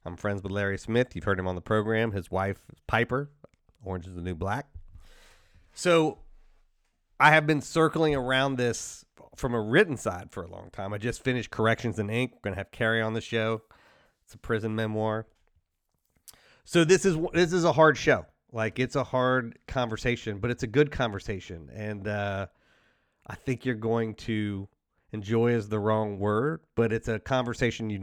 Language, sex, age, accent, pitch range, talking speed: English, male, 30-49, American, 105-145 Hz, 190 wpm